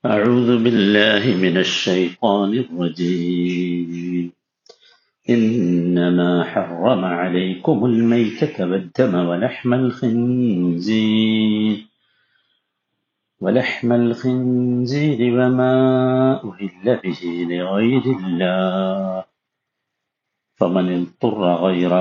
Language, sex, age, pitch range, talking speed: Malayalam, male, 50-69, 90-115 Hz, 70 wpm